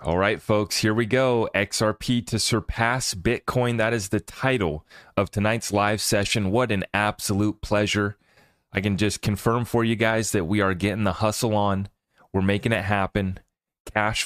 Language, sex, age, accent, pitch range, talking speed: English, male, 30-49, American, 95-110 Hz, 175 wpm